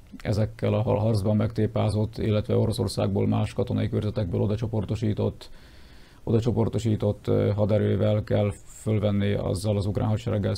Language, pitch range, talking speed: Hungarian, 105-115 Hz, 95 wpm